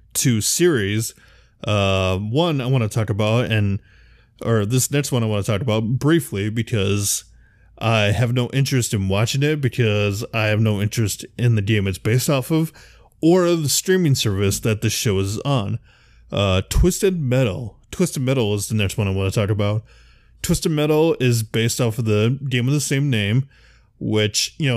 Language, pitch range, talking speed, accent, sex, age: English, 105-130 Hz, 185 wpm, American, male, 20-39